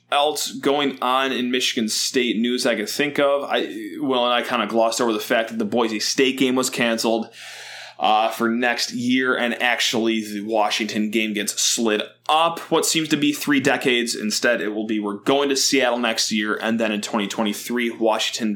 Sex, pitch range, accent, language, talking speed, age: male, 115-145 Hz, American, English, 195 wpm, 20-39